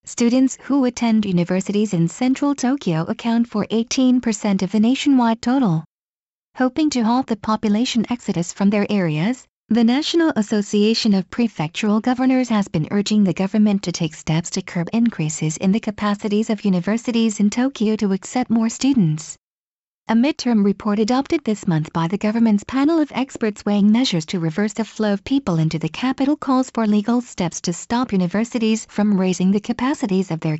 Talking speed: 170 wpm